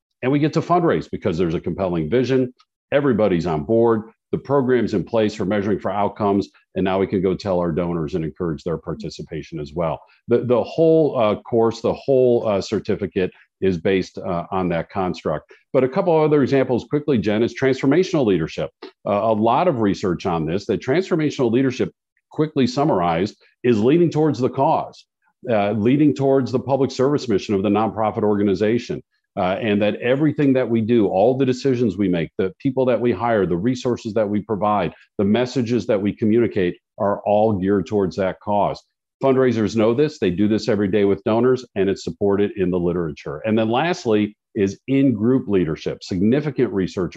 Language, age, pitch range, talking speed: English, 50-69, 100-135 Hz, 185 wpm